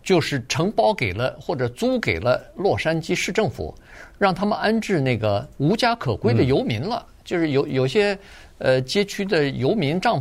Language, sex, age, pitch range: Chinese, male, 50-69, 120-175 Hz